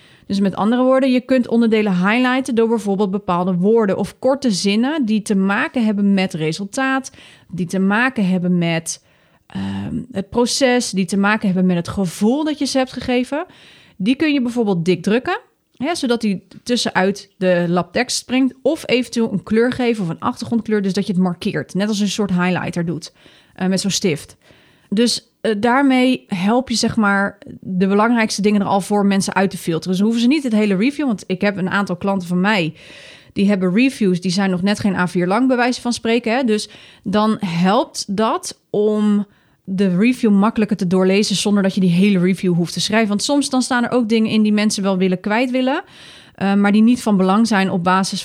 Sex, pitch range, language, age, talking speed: female, 190-240 Hz, Dutch, 30-49, 210 wpm